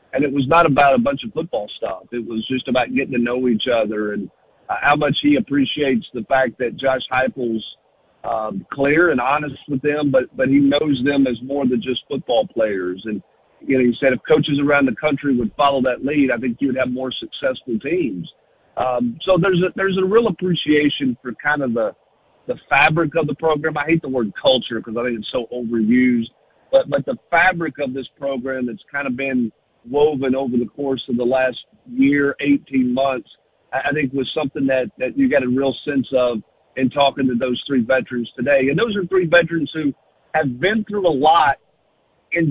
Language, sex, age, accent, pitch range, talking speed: English, male, 50-69, American, 130-155 Hz, 210 wpm